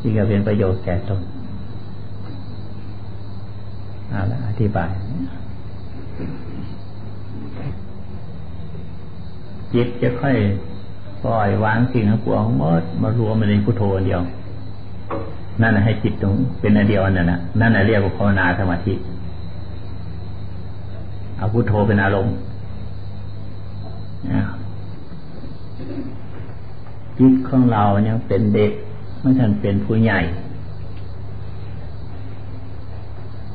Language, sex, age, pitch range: Thai, male, 60-79, 95-110 Hz